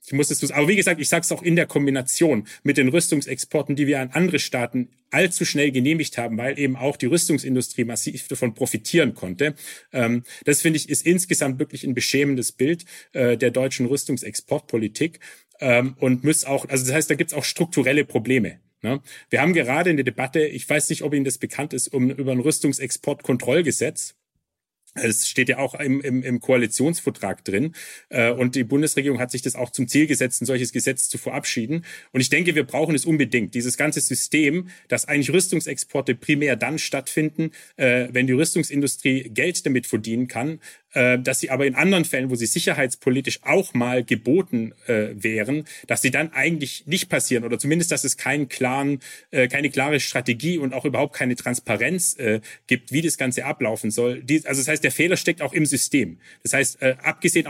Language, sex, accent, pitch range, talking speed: German, male, German, 125-155 Hz, 185 wpm